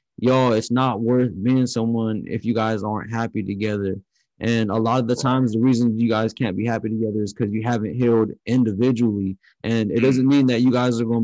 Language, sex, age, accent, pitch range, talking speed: English, male, 20-39, American, 105-120 Hz, 220 wpm